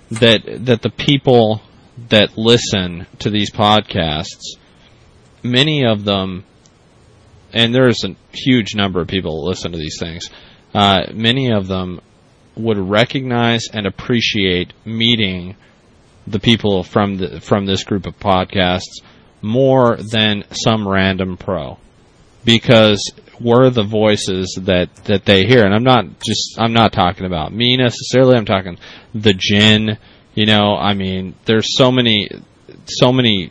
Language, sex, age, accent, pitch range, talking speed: English, male, 30-49, American, 95-115 Hz, 140 wpm